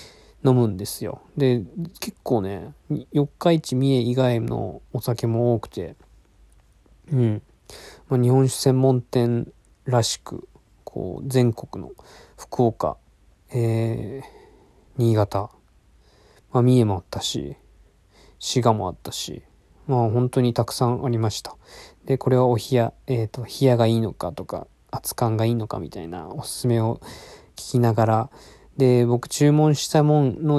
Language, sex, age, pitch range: Japanese, male, 20-39, 115-135 Hz